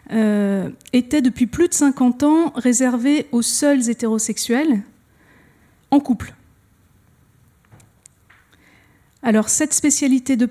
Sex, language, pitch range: female, French, 215-255 Hz